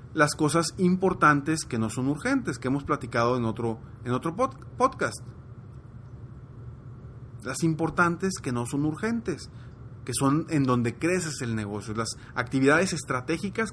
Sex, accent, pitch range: male, Mexican, 120-160 Hz